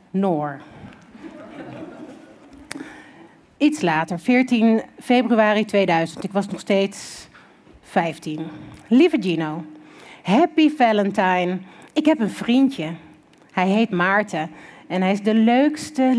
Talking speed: 100 wpm